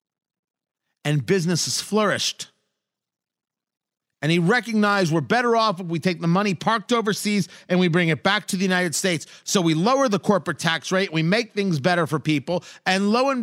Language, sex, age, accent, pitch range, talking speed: English, male, 40-59, American, 155-205 Hz, 190 wpm